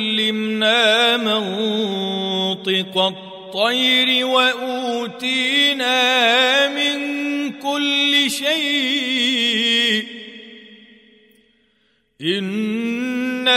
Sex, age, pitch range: male, 40-59, 220-260 Hz